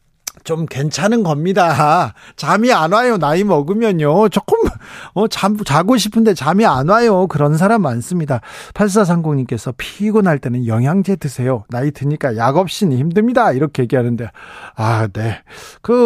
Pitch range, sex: 130-200 Hz, male